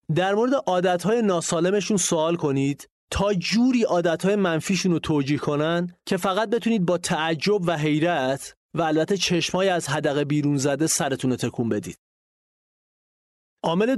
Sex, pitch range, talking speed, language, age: male, 145-185 Hz, 135 wpm, English, 30-49